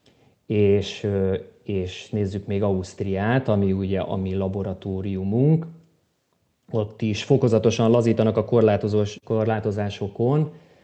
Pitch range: 100-110 Hz